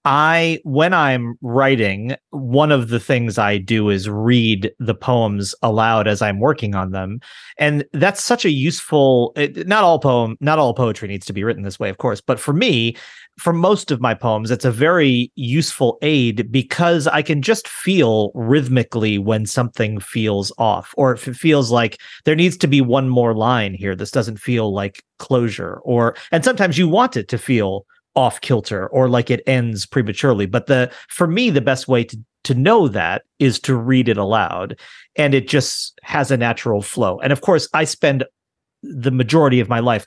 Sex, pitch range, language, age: male, 110-145 Hz, English, 30-49